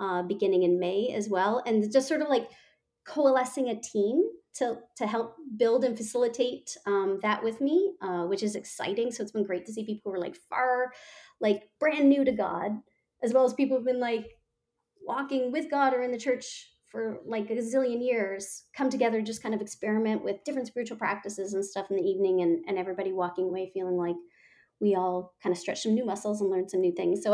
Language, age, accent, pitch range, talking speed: English, 30-49, American, 195-250 Hz, 215 wpm